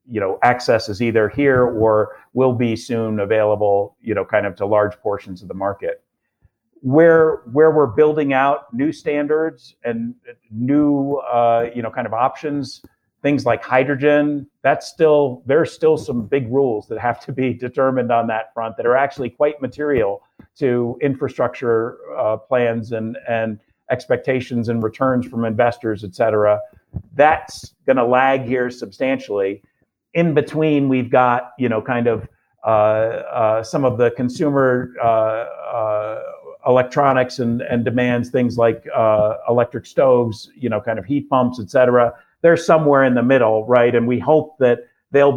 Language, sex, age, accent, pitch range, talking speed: English, male, 50-69, American, 110-135 Hz, 160 wpm